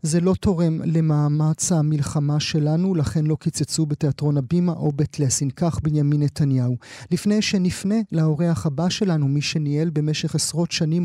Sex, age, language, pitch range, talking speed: male, 30-49, Hebrew, 155-200 Hz, 140 wpm